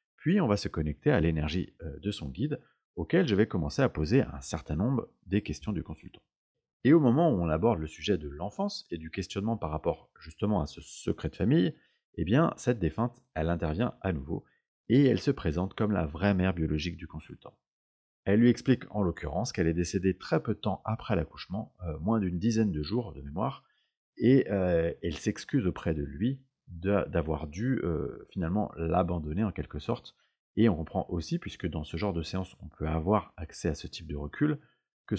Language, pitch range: French, 80-105 Hz